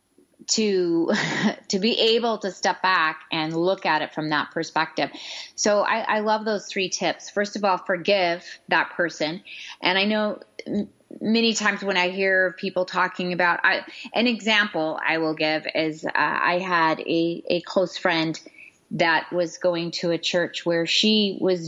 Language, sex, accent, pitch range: English, female, American, 170-210 Hz